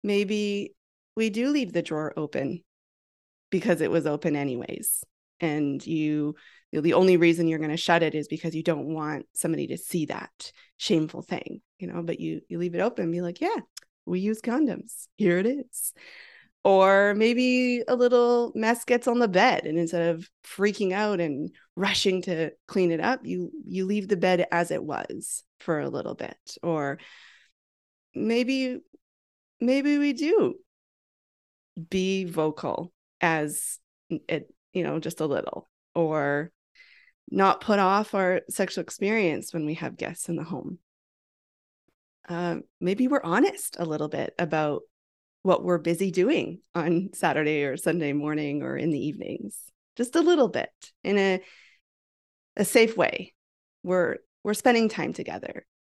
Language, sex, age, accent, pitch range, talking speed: English, female, 30-49, American, 165-225 Hz, 160 wpm